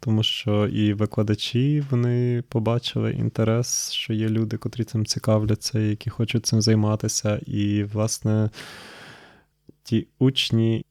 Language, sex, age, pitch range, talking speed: Ukrainian, male, 20-39, 105-125 Hz, 115 wpm